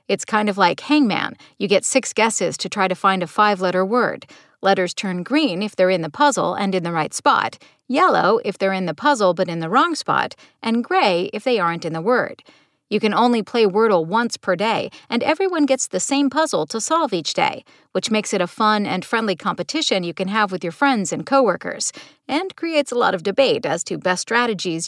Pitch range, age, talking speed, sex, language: 185-270 Hz, 40-59, 220 wpm, female, English